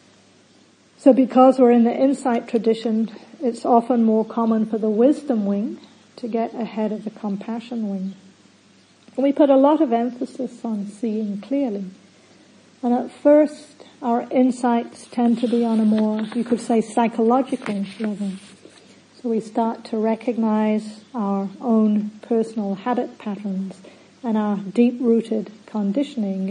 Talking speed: 140 wpm